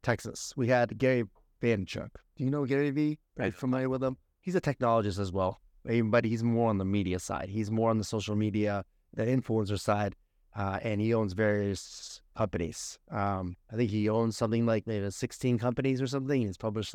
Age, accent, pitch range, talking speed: 30-49, American, 105-140 Hz, 200 wpm